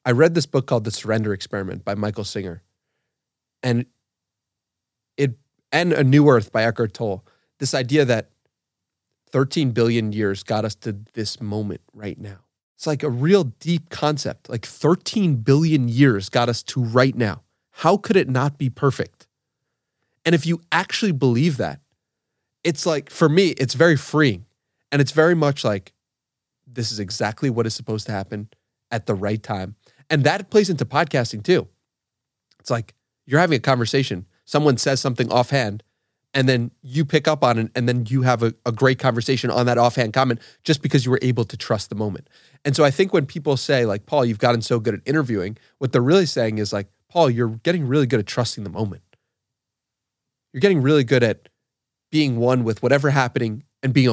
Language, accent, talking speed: English, American, 190 wpm